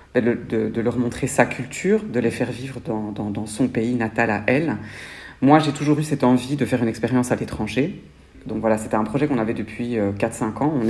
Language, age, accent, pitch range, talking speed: French, 40-59, French, 105-130 Hz, 225 wpm